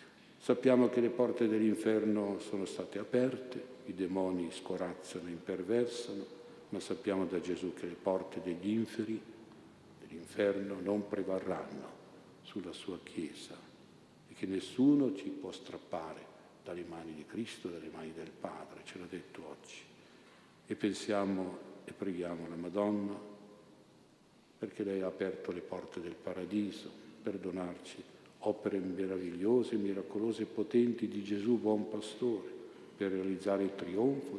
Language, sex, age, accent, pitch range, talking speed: Italian, male, 60-79, native, 95-110 Hz, 130 wpm